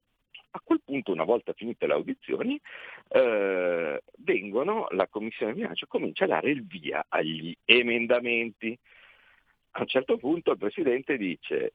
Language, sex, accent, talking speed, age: Italian, male, native, 140 wpm, 50-69